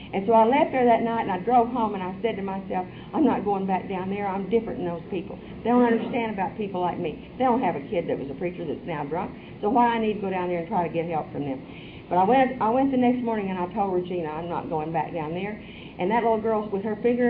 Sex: female